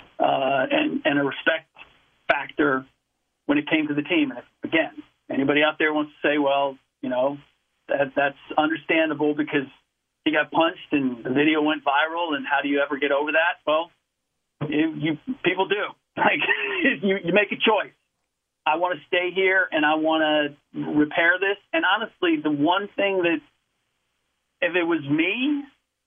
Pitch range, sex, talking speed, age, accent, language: 145-190 Hz, male, 175 wpm, 40-59, American, English